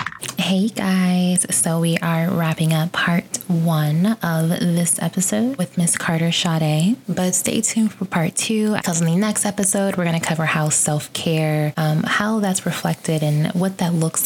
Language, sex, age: English, female, 20-39